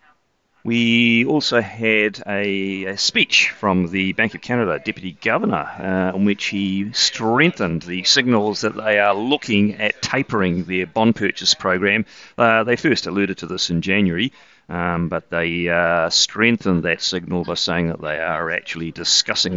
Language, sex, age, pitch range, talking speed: English, male, 40-59, 90-115 Hz, 160 wpm